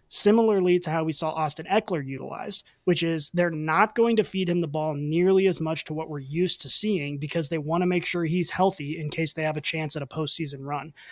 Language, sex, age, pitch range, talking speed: English, male, 20-39, 155-200 Hz, 245 wpm